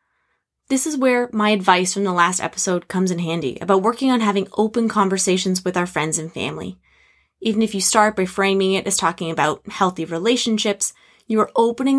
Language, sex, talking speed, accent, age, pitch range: English, female, 190 wpm, American, 20-39, 185-235 Hz